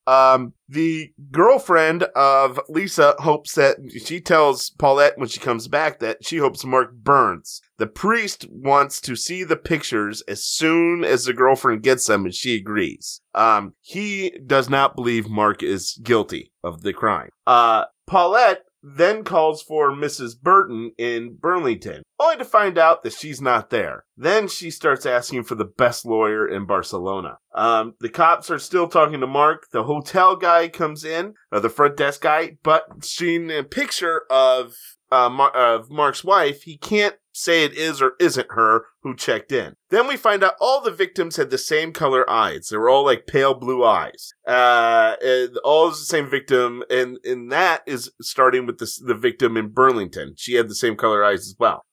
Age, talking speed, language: 30-49, 185 wpm, English